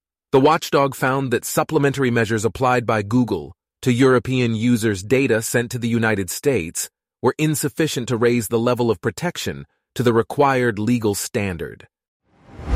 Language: English